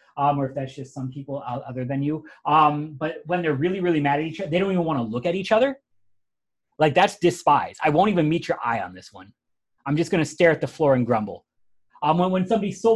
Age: 30-49